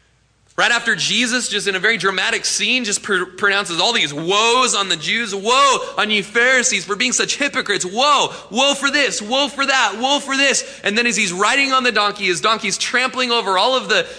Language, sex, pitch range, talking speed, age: English, male, 155-220 Hz, 210 wpm, 20-39